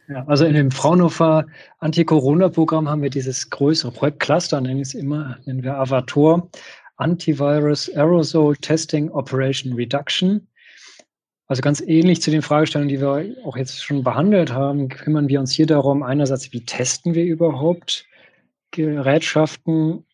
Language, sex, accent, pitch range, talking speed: German, male, German, 135-160 Hz, 140 wpm